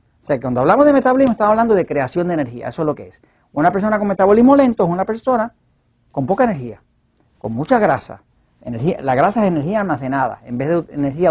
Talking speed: 220 wpm